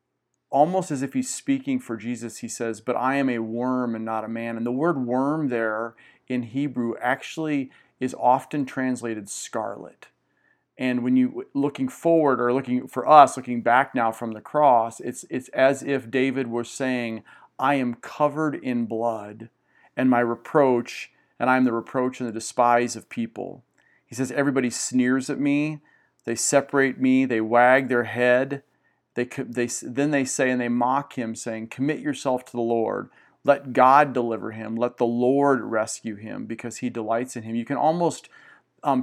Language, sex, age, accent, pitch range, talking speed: English, male, 40-59, American, 115-135 Hz, 180 wpm